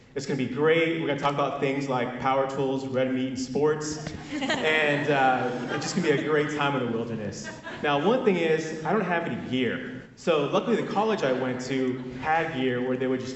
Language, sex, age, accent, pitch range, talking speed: English, male, 30-49, American, 135-190 Hz, 225 wpm